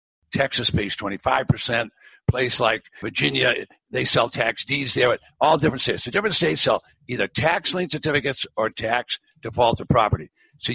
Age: 60-79